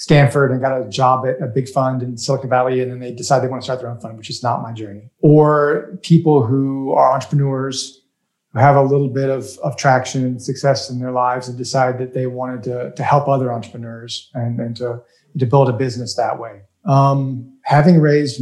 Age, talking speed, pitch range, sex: 30-49, 220 wpm, 130-150 Hz, male